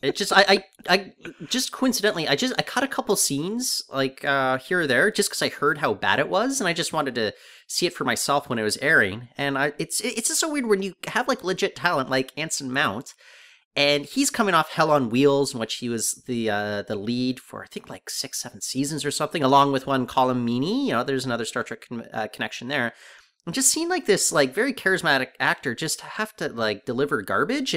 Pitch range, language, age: 130-195 Hz, English, 30-49